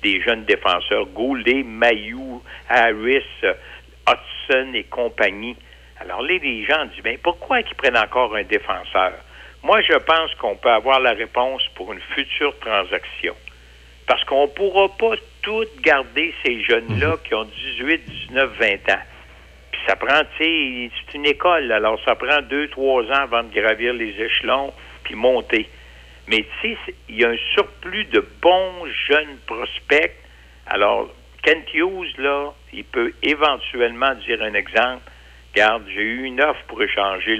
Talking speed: 155 wpm